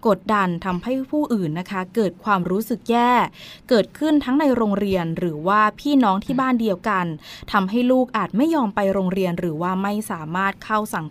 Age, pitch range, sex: 20-39, 185-235 Hz, female